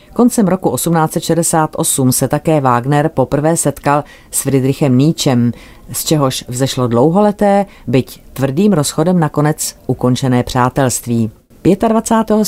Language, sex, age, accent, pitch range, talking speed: Czech, female, 40-59, native, 125-160 Hz, 110 wpm